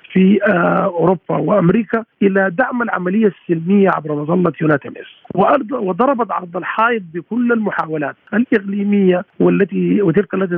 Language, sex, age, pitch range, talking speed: Arabic, male, 50-69, 165-210 Hz, 110 wpm